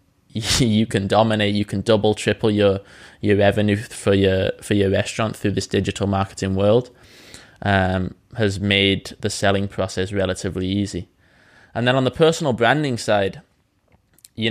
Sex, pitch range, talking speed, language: male, 95-105 Hz, 150 wpm, English